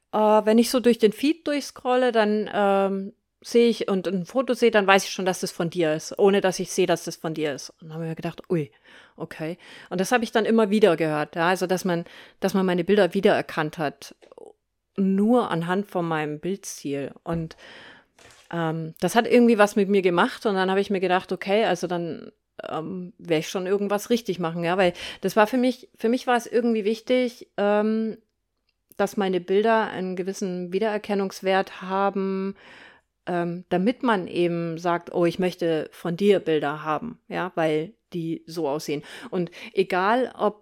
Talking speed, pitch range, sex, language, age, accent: 195 wpm, 170-215 Hz, female, German, 40-59, German